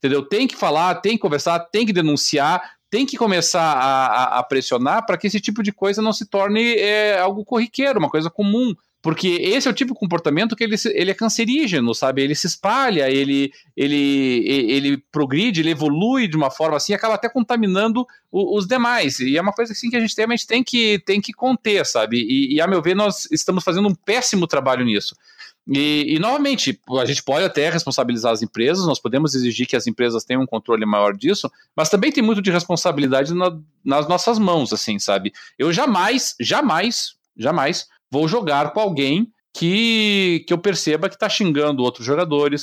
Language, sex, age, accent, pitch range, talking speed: Portuguese, male, 40-59, Brazilian, 135-210 Hz, 190 wpm